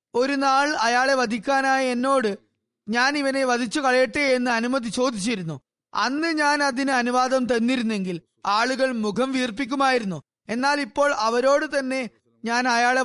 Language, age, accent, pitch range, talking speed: Malayalam, 20-39, native, 225-270 Hz, 120 wpm